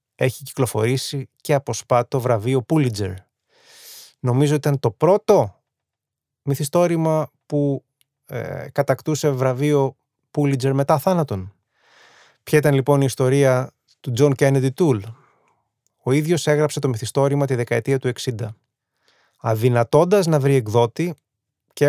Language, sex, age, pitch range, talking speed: Greek, male, 20-39, 120-145 Hz, 115 wpm